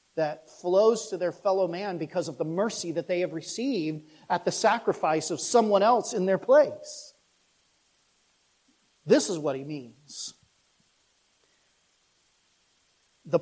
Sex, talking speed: male, 130 wpm